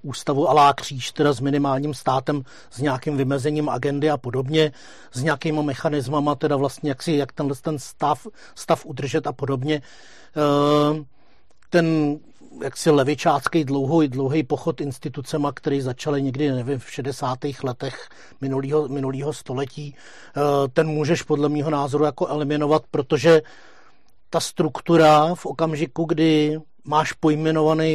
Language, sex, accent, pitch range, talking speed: Czech, male, native, 140-155 Hz, 135 wpm